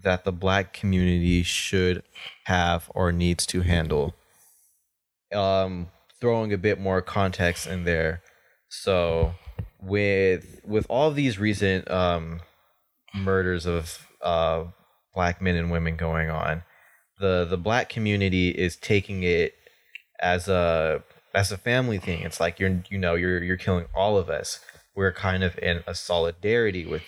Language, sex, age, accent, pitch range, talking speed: English, male, 20-39, American, 90-110 Hz, 145 wpm